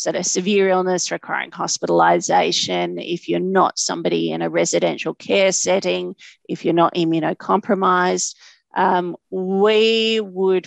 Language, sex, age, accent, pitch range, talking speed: English, female, 40-59, Australian, 160-200 Hz, 130 wpm